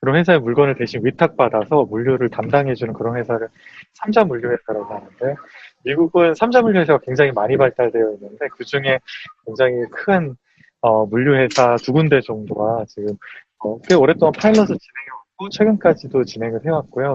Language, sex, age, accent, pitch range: Korean, male, 20-39, native, 115-155 Hz